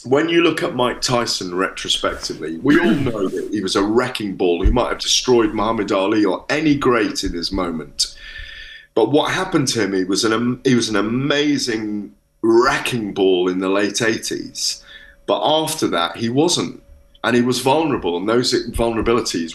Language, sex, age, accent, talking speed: English, male, 30-49, British, 170 wpm